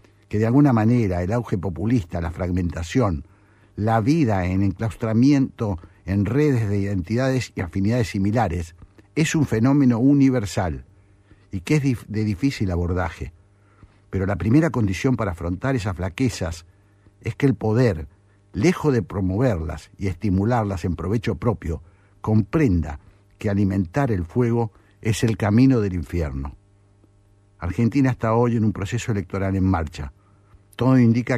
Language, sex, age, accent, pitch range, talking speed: Spanish, male, 60-79, Argentinian, 95-120 Hz, 135 wpm